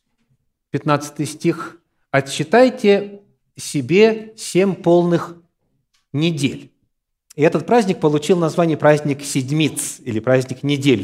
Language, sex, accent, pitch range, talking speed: Russian, male, native, 130-185 Hz, 90 wpm